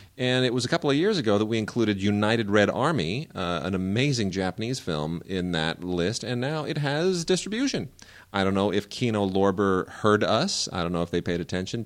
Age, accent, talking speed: 30-49, American, 210 wpm